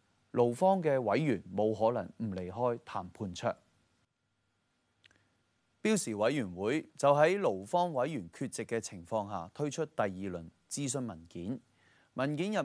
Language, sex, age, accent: Chinese, male, 30-49, native